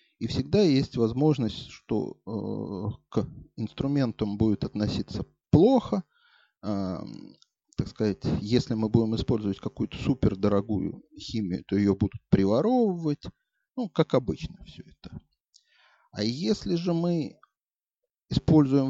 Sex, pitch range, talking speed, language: male, 105-155 Hz, 105 wpm, Russian